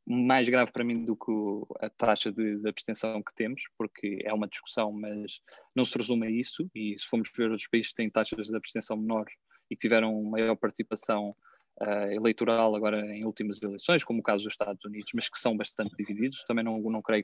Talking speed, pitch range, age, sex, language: 210 wpm, 110-130 Hz, 20-39, male, Portuguese